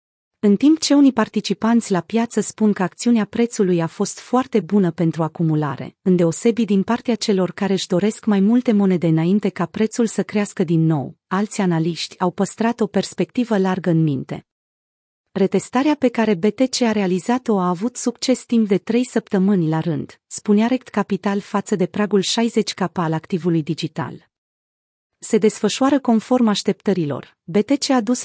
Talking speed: 160 wpm